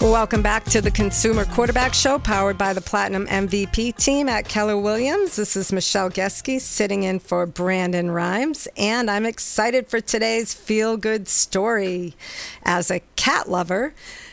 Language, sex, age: English, female, 50-69